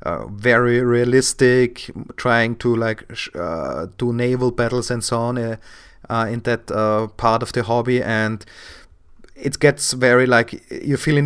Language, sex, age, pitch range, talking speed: English, male, 30-49, 115-130 Hz, 165 wpm